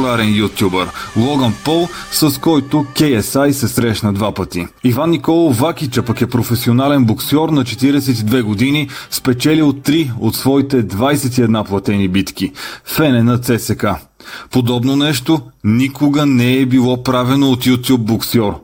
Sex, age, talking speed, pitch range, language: male, 30-49, 130 wpm, 115-140 Hz, Bulgarian